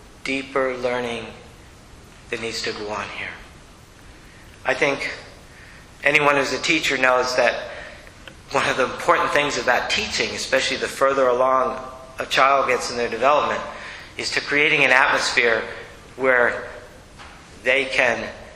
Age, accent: 50-69, American